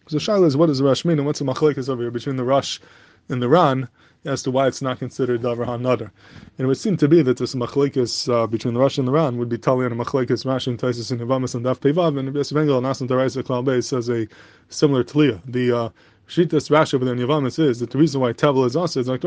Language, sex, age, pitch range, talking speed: English, male, 20-39, 125-150 Hz, 265 wpm